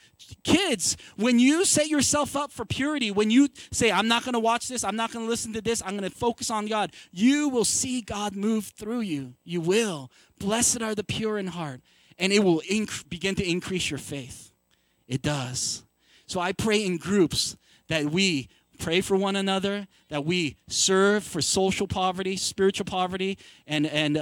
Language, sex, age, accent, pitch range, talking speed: English, male, 30-49, American, 155-210 Hz, 190 wpm